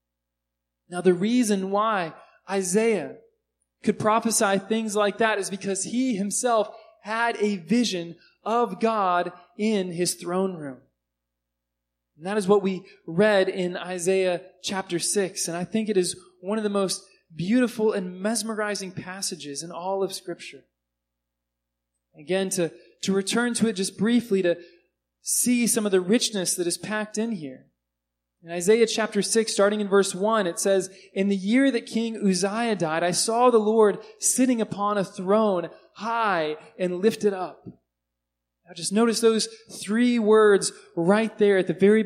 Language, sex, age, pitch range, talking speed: English, male, 20-39, 175-215 Hz, 155 wpm